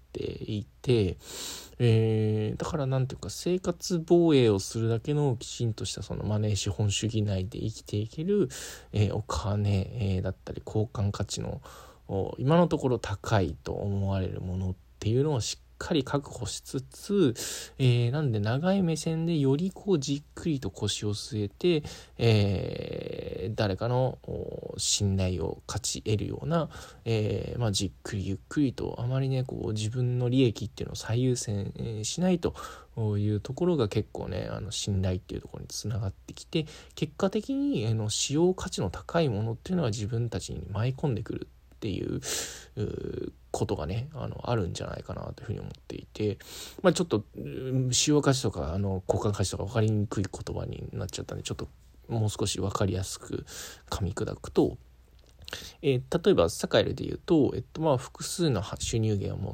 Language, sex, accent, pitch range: Japanese, male, native, 100-135 Hz